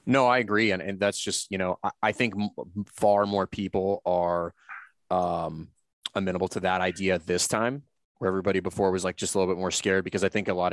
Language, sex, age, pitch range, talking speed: English, male, 30-49, 90-105 Hz, 220 wpm